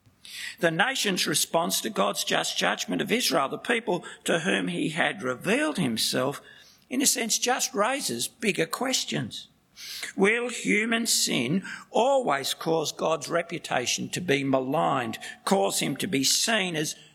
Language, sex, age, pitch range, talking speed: English, male, 60-79, 160-230 Hz, 140 wpm